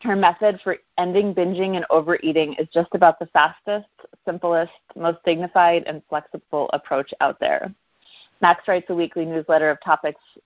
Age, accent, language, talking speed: 30-49, American, English, 155 wpm